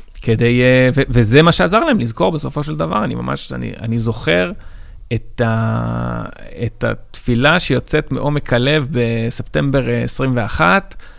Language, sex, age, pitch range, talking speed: Hebrew, male, 30-49, 105-155 Hz, 125 wpm